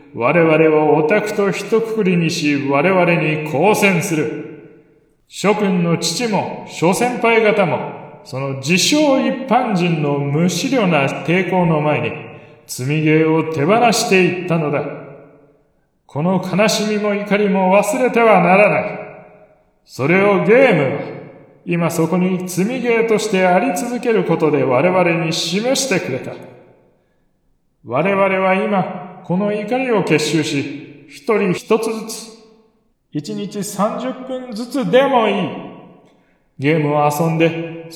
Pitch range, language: 155-215 Hz, Japanese